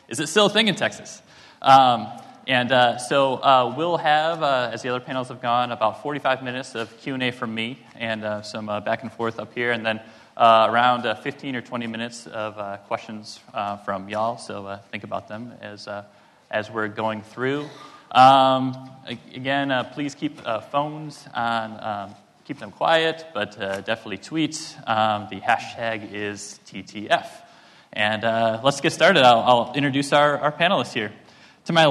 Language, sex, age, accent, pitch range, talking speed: English, male, 20-39, American, 110-140 Hz, 185 wpm